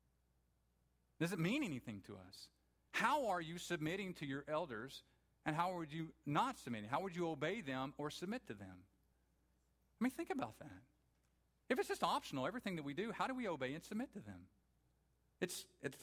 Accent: American